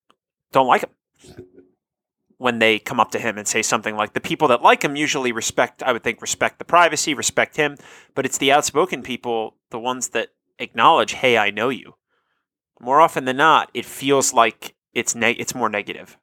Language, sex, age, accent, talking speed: English, male, 30-49, American, 195 wpm